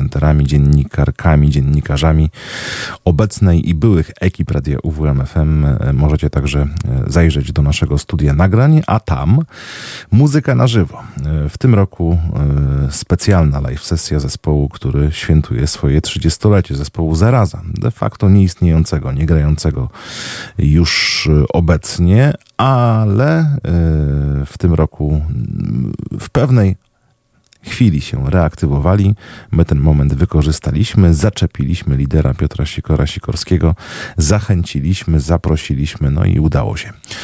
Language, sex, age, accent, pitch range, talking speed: Polish, male, 40-59, native, 75-100 Hz, 105 wpm